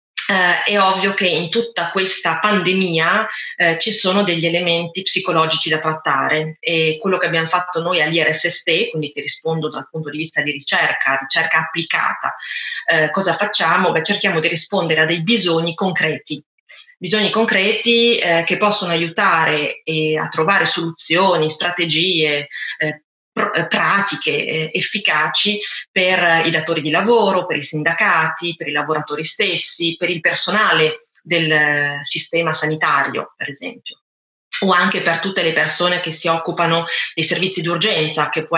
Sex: female